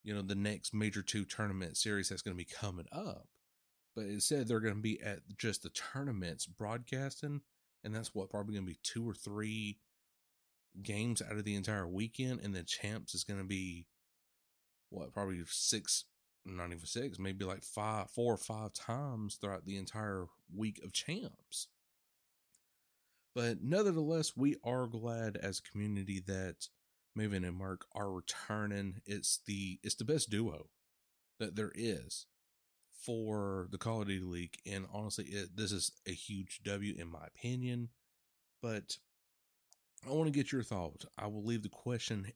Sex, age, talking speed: male, 30-49, 170 wpm